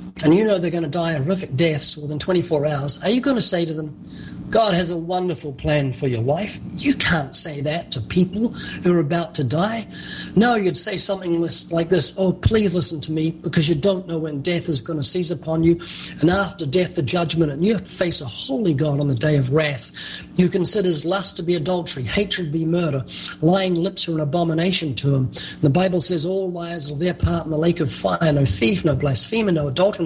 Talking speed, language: 230 wpm, English